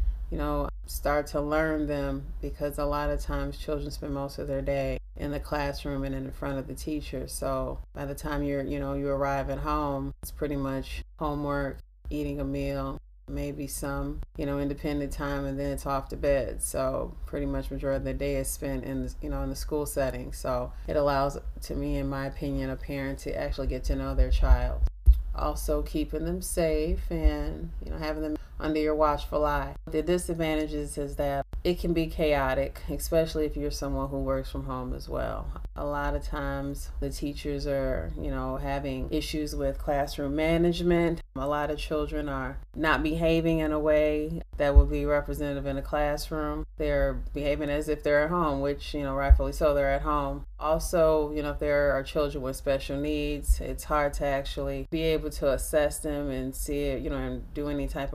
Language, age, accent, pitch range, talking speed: English, 30-49, American, 135-150 Hz, 200 wpm